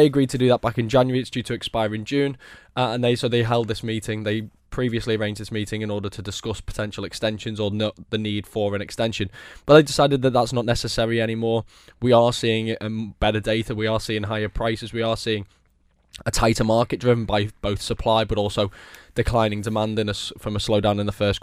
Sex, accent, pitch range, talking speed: male, British, 105-120 Hz, 220 wpm